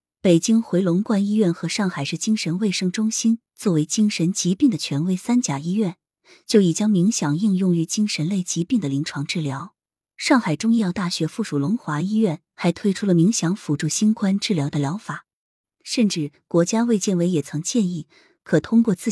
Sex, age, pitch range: female, 20-39, 155-210 Hz